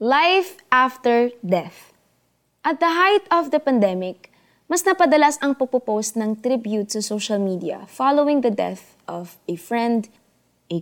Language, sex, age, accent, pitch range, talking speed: Filipino, female, 20-39, native, 205-270 Hz, 140 wpm